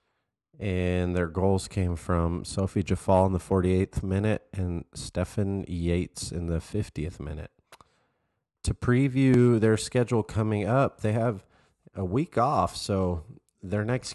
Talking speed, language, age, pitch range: 135 wpm, English, 30-49, 90-105 Hz